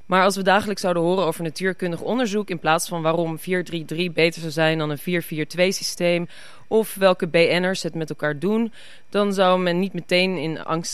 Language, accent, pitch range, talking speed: Dutch, Dutch, 150-185 Hz, 190 wpm